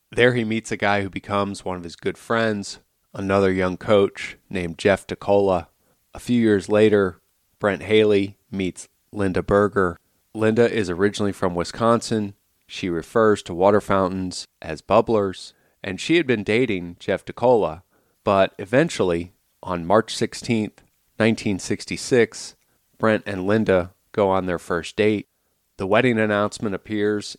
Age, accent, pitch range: 30-49, American, 95-110 Hz